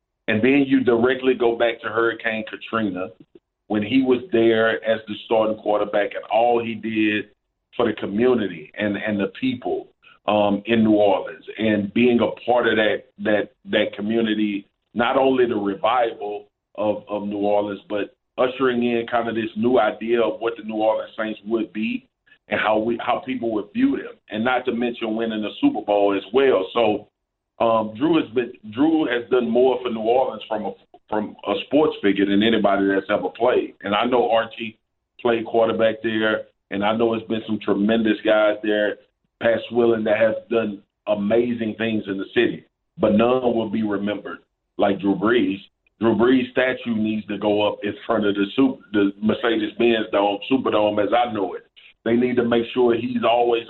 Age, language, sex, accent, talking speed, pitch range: 40-59, English, male, American, 190 wpm, 105-120 Hz